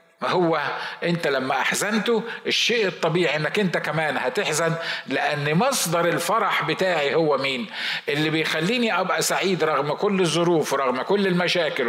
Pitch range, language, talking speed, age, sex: 140-185 Hz, Arabic, 130 wpm, 50-69, male